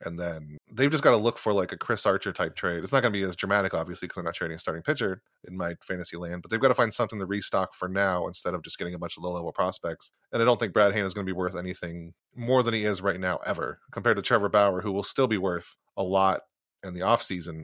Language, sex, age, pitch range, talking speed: English, male, 30-49, 95-115 Hz, 295 wpm